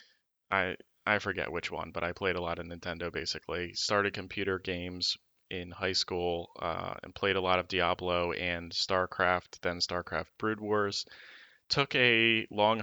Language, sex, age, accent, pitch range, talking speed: English, male, 20-39, American, 90-105 Hz, 165 wpm